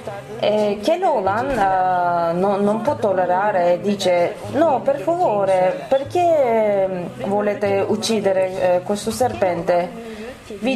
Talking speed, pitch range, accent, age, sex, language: 115 wpm, 185-230 Hz, native, 20-39, female, Italian